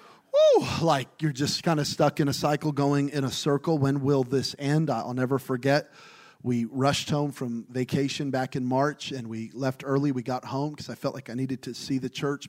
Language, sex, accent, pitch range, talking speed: English, male, American, 130-155 Hz, 220 wpm